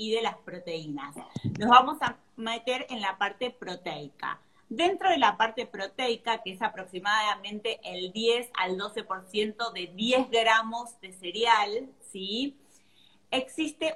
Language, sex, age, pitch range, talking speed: Spanish, female, 30-49, 205-265 Hz, 135 wpm